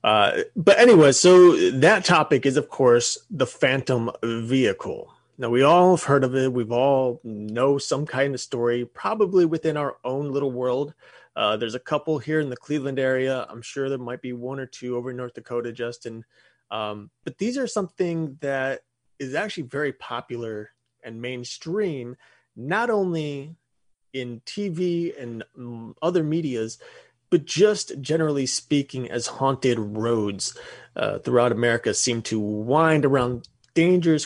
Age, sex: 30-49, male